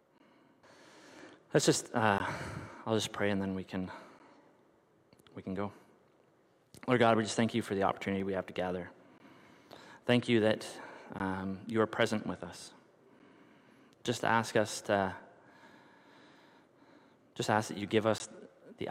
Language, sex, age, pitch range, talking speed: English, male, 30-49, 100-110 Hz, 145 wpm